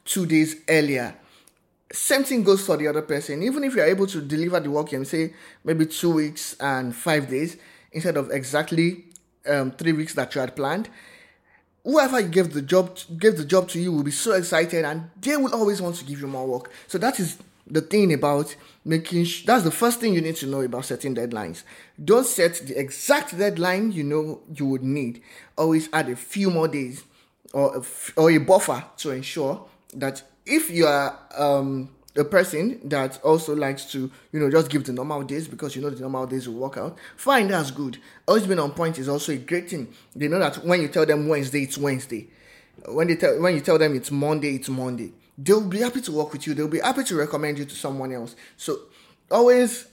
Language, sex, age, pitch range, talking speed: English, male, 20-39, 140-175 Hz, 220 wpm